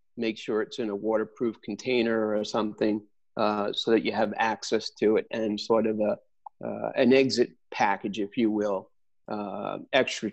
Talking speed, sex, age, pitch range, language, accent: 175 wpm, male, 40-59, 110-125 Hz, English, American